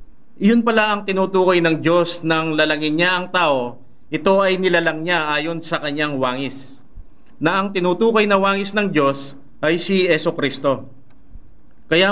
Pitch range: 145-185 Hz